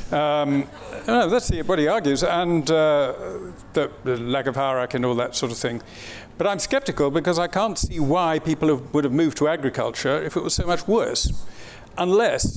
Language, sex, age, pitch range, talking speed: English, male, 50-69, 125-160 Hz, 190 wpm